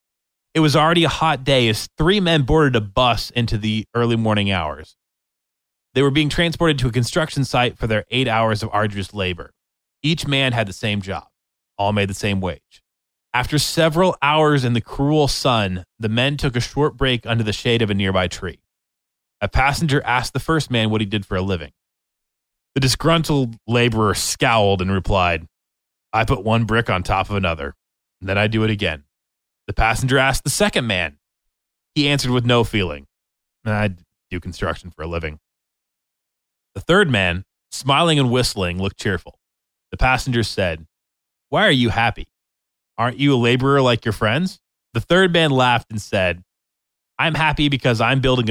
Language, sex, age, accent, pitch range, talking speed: English, male, 20-39, American, 100-135 Hz, 180 wpm